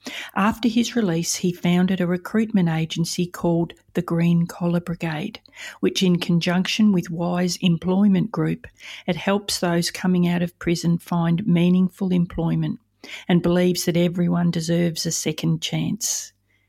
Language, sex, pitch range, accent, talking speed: English, female, 165-185 Hz, Australian, 135 wpm